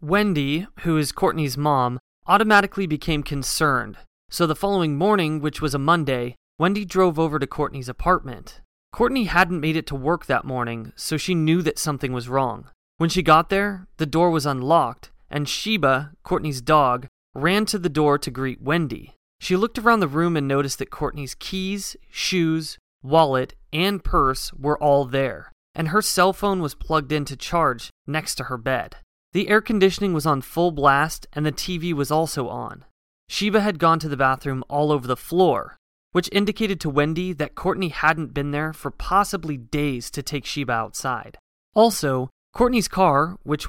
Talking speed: 175 wpm